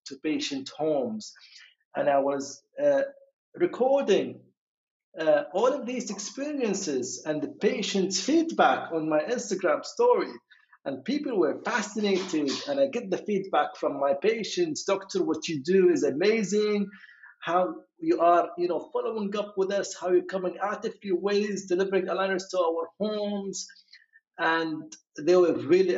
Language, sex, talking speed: English, male, 145 wpm